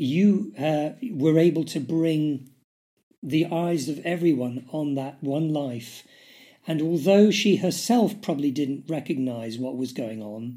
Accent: British